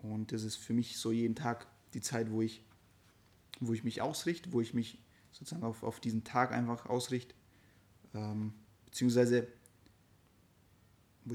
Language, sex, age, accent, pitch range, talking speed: German, male, 30-49, German, 110-125 Hz, 155 wpm